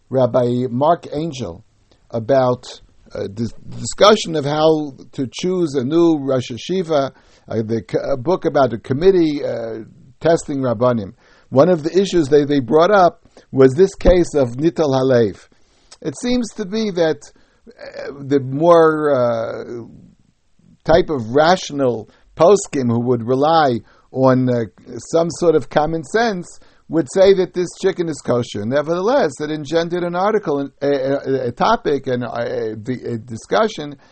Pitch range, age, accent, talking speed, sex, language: 120-170 Hz, 60-79, American, 150 wpm, male, English